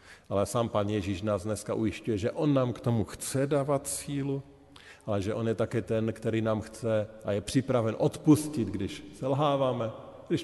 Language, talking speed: Slovak, 180 wpm